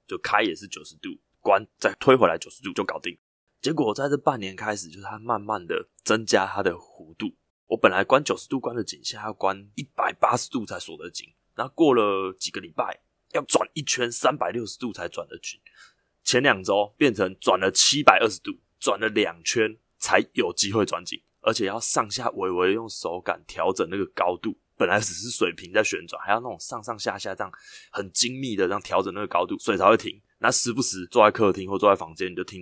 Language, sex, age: Chinese, male, 20-39